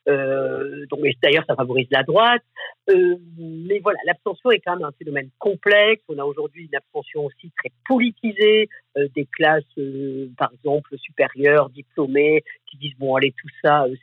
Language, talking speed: French, 175 wpm